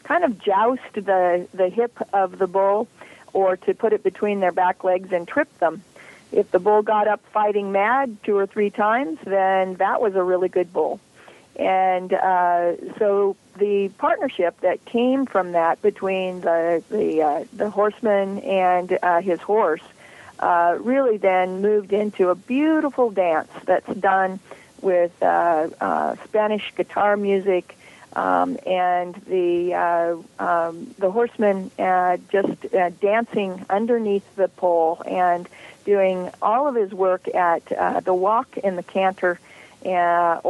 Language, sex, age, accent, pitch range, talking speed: English, female, 50-69, American, 180-210 Hz, 150 wpm